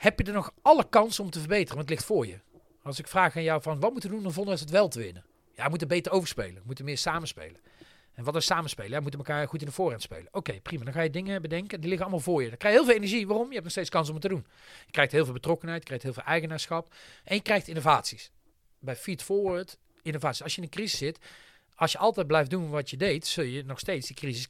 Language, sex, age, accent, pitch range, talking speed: Dutch, male, 40-59, Dutch, 140-190 Hz, 295 wpm